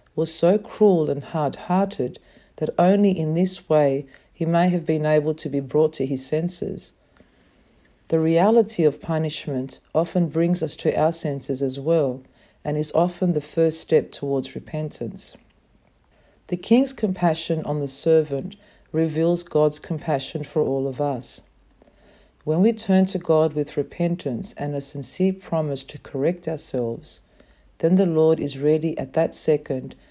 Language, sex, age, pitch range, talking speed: English, female, 50-69, 145-175 Hz, 155 wpm